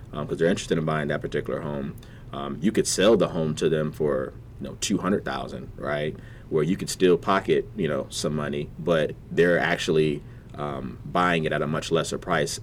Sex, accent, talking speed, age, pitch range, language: male, American, 210 wpm, 30-49, 75-100 Hz, English